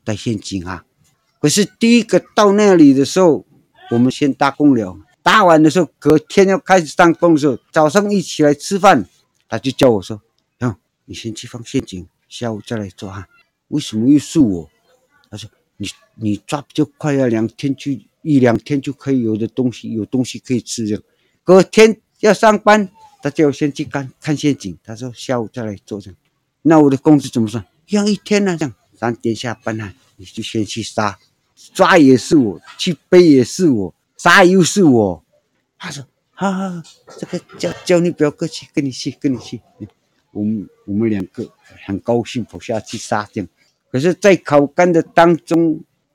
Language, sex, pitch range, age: Chinese, male, 115-165 Hz, 60-79